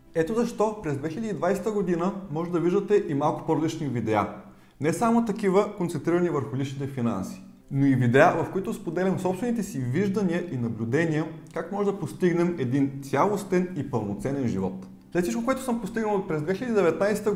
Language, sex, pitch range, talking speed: Bulgarian, male, 125-185 Hz, 165 wpm